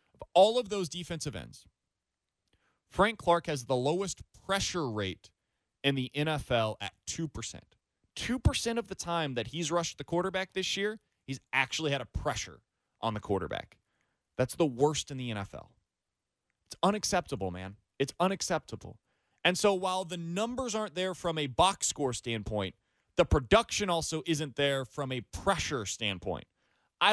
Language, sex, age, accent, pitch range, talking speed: English, male, 30-49, American, 120-195 Hz, 155 wpm